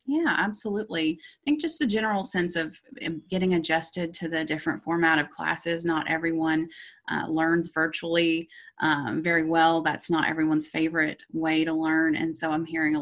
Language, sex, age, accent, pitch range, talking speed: English, female, 20-39, American, 155-185 Hz, 170 wpm